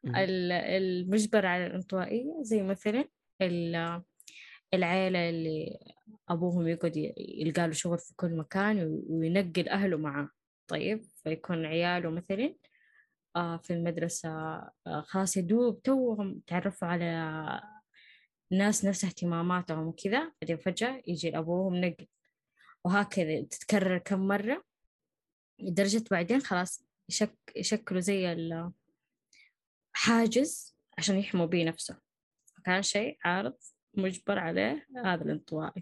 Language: Arabic